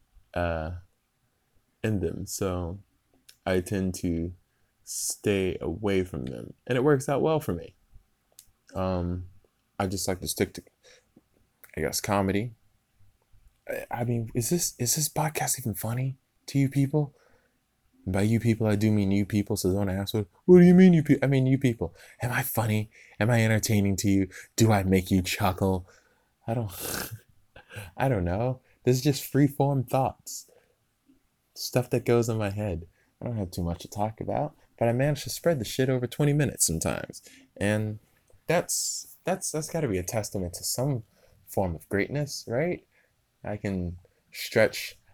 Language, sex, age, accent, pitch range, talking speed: English, male, 20-39, American, 95-125 Hz, 170 wpm